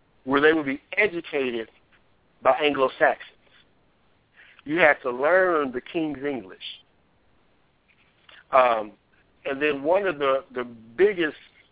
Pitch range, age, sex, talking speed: 125-150 Hz, 50-69, male, 115 wpm